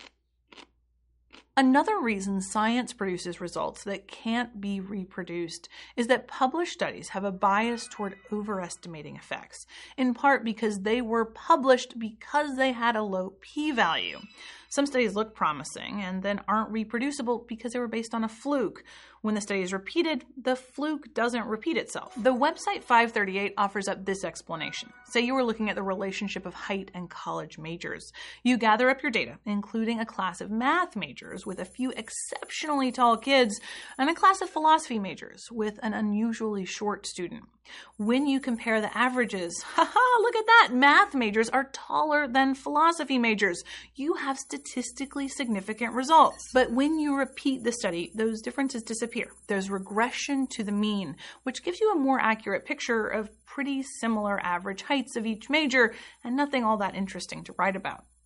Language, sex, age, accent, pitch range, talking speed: English, female, 30-49, American, 200-265 Hz, 165 wpm